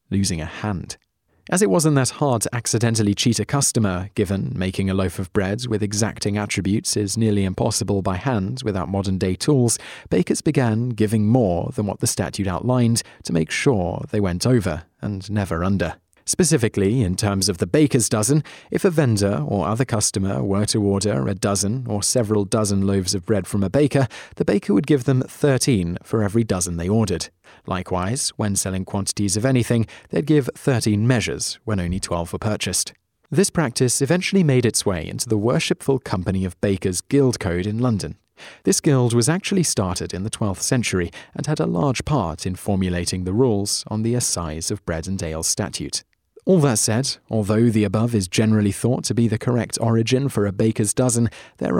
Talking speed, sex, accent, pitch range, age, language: 190 wpm, male, British, 95-125 Hz, 30-49, English